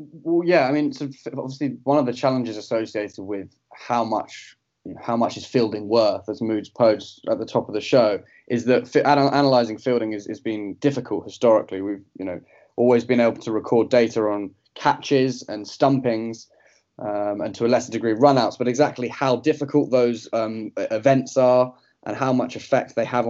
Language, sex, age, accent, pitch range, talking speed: English, male, 10-29, British, 110-130 Hz, 175 wpm